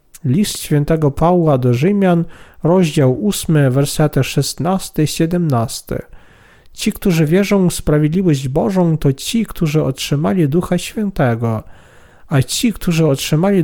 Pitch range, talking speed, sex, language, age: 140-190 Hz, 110 wpm, male, Polish, 40-59